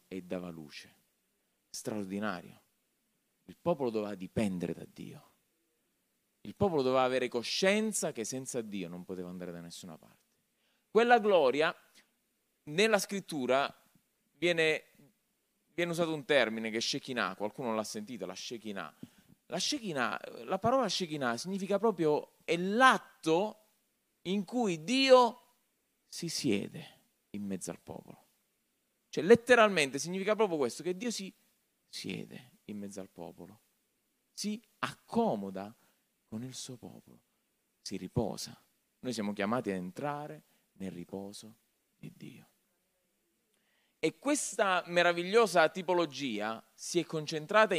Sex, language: male, Italian